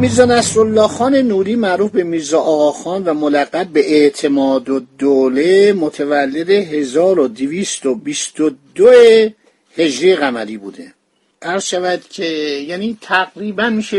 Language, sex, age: Persian, male, 50-69